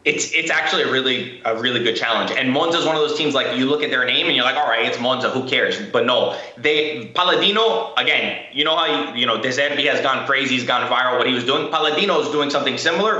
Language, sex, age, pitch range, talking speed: English, male, 20-39, 130-160 Hz, 260 wpm